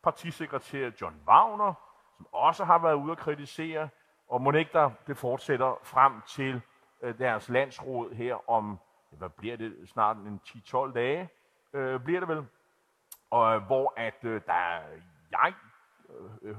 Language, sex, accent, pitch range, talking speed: Danish, male, native, 110-150 Hz, 145 wpm